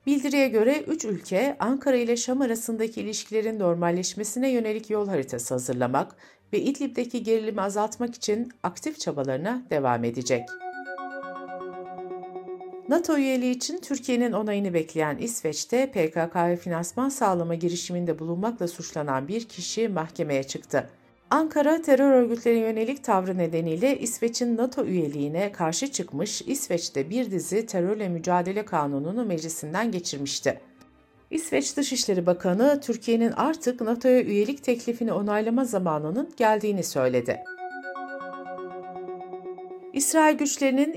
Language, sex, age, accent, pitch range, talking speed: Turkish, female, 60-79, native, 165-250 Hz, 105 wpm